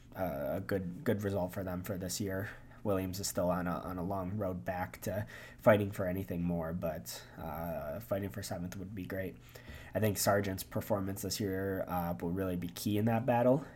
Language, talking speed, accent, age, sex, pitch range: English, 205 wpm, American, 20-39, male, 90-105 Hz